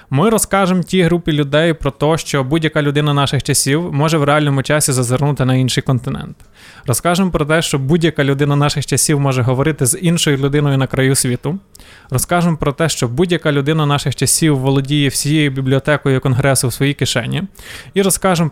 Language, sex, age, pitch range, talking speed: Ukrainian, male, 20-39, 135-160 Hz, 170 wpm